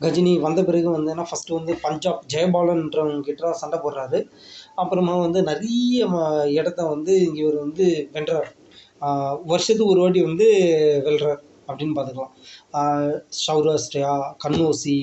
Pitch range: 150-185 Hz